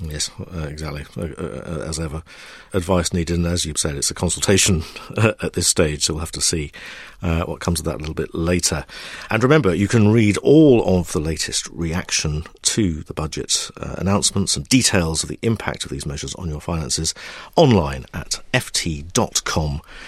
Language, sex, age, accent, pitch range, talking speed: English, male, 50-69, British, 80-110 Hz, 185 wpm